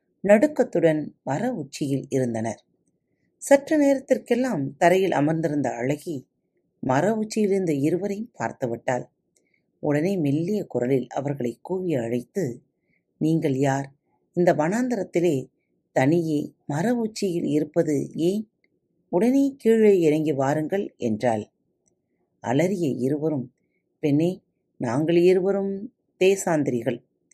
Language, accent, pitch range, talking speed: Tamil, native, 130-190 Hz, 85 wpm